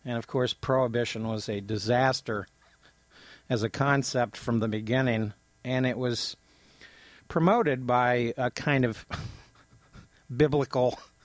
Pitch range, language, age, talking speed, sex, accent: 115-130 Hz, English, 50-69, 115 wpm, male, American